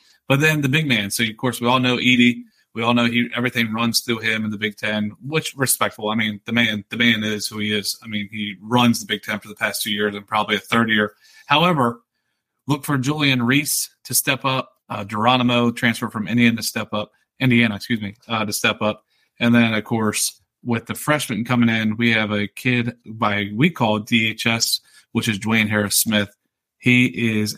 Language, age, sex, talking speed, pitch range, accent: English, 30-49, male, 220 wpm, 105-125 Hz, American